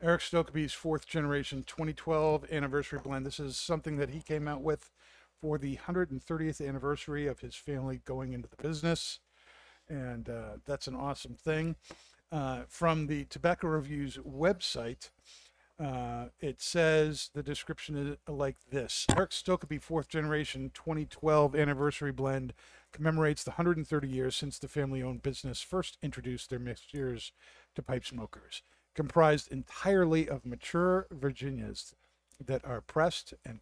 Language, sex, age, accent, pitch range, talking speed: English, male, 50-69, American, 125-155 Hz, 135 wpm